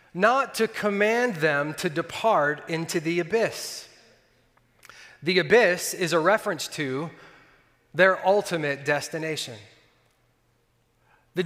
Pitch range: 145-205 Hz